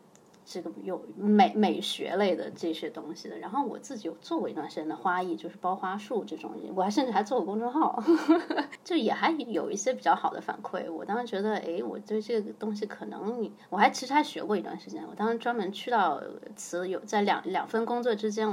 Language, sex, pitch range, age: Chinese, female, 190-250 Hz, 20-39